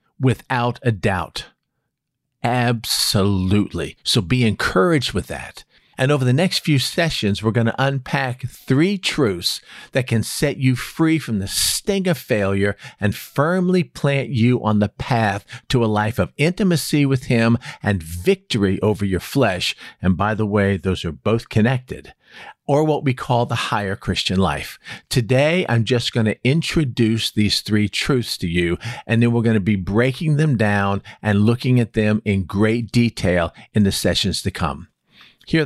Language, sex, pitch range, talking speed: English, male, 105-140 Hz, 165 wpm